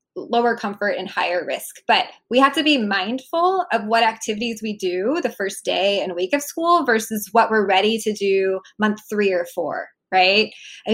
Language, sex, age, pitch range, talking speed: English, female, 20-39, 205-270 Hz, 190 wpm